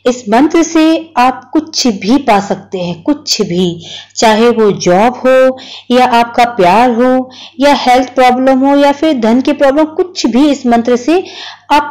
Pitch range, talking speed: 195-295 Hz, 170 wpm